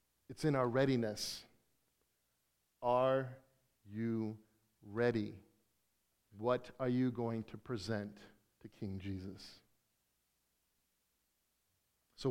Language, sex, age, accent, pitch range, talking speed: English, male, 50-69, American, 110-145 Hz, 85 wpm